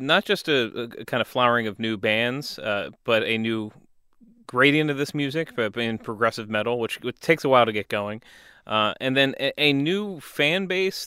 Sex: male